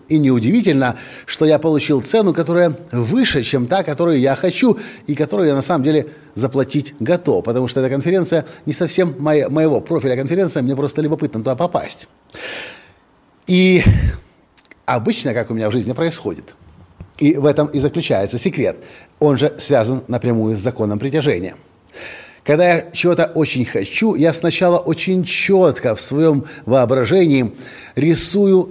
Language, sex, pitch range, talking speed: Russian, male, 125-170 Hz, 145 wpm